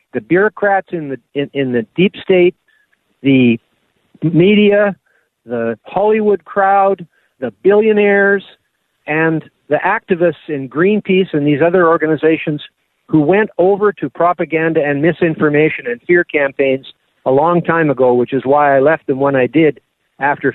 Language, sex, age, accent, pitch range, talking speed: English, male, 50-69, American, 145-200 Hz, 145 wpm